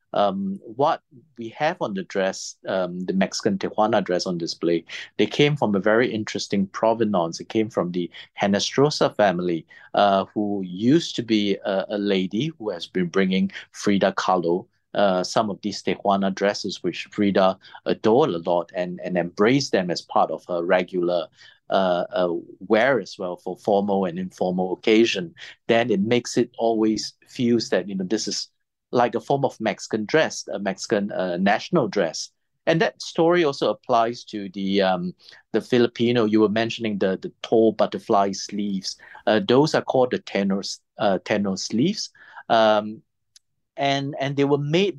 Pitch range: 95-120 Hz